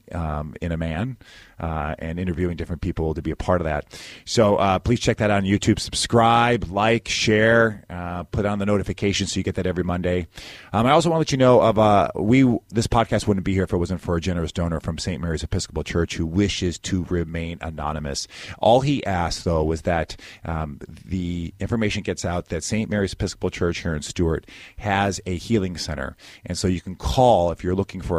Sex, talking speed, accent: male, 215 wpm, American